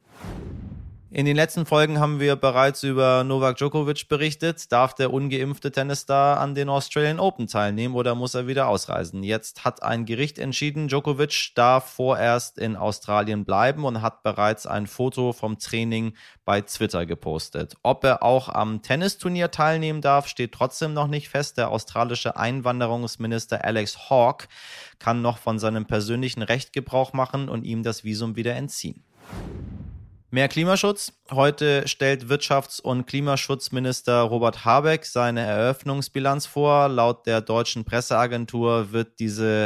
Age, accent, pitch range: 30-49, German, 110-135 Hz